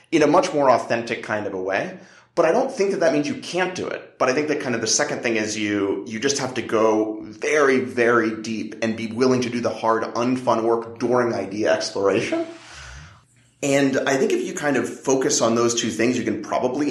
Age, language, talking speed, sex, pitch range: 30-49, English, 235 wpm, male, 110-140 Hz